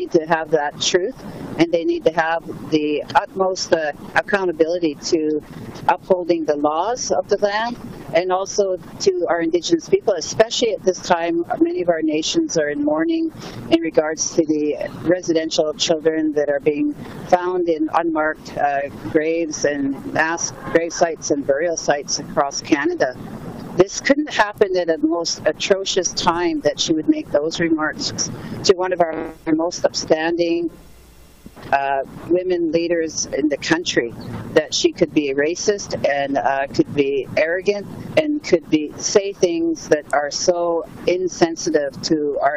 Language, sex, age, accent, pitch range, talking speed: English, female, 50-69, American, 155-190 Hz, 150 wpm